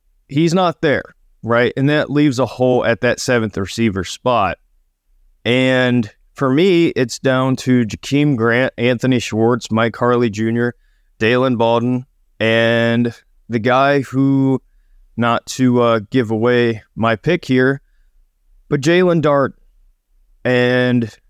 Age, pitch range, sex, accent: 30-49, 105-130 Hz, male, American